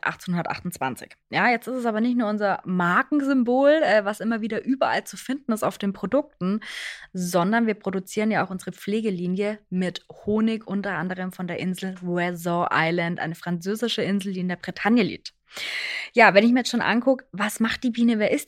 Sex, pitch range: female, 195-230 Hz